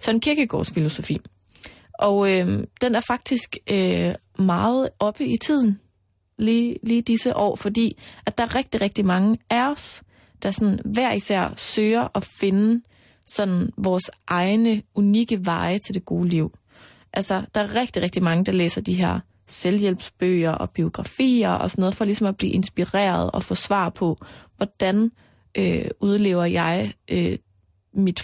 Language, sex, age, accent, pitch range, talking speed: Danish, female, 20-39, native, 170-210 Hz, 155 wpm